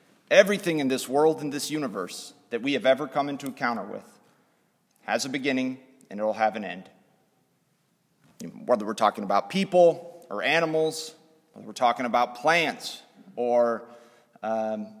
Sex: male